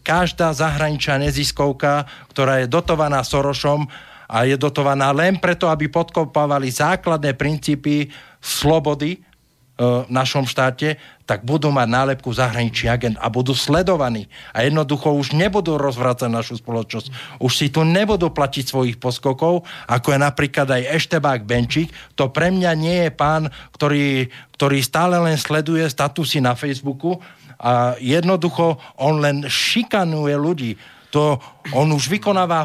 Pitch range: 135-170 Hz